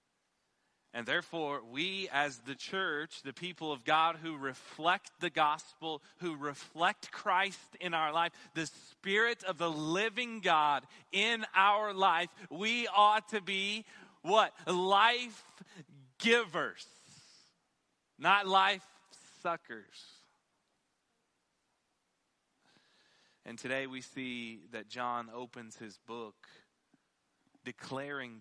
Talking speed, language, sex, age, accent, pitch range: 105 wpm, English, male, 30-49, American, 115-170 Hz